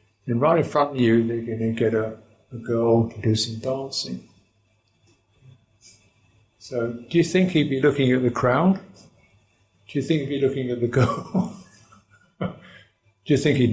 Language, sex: English, male